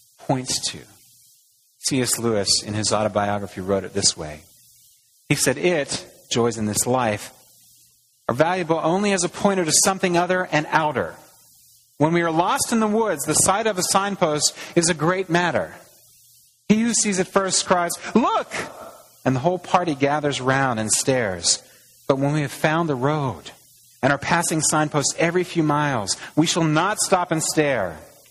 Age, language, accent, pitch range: 40-59, English, American, 115-160 Hz